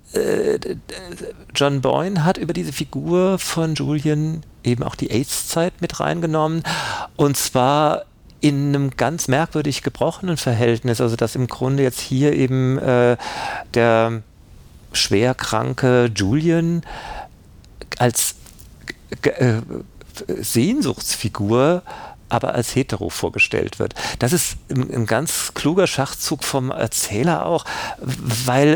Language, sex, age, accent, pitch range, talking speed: German, male, 50-69, German, 110-145 Hz, 105 wpm